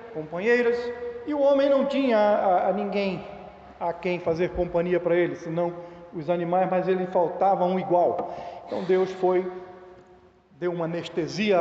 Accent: Brazilian